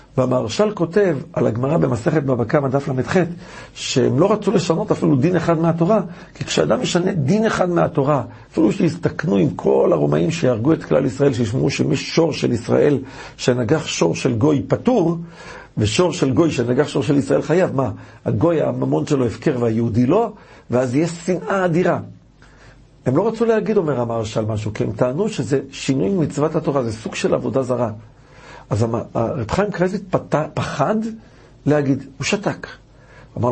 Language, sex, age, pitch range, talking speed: Hebrew, male, 60-79, 125-165 Hz, 160 wpm